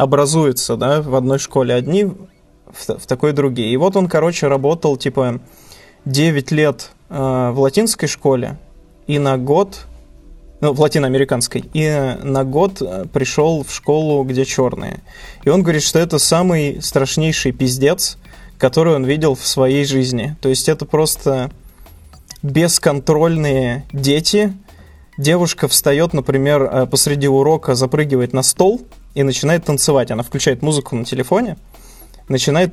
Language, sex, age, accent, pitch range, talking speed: Russian, male, 20-39, native, 130-155 Hz, 140 wpm